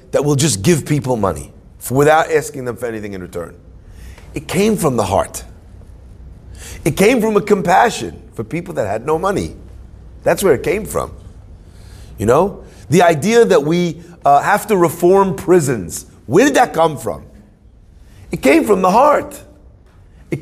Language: English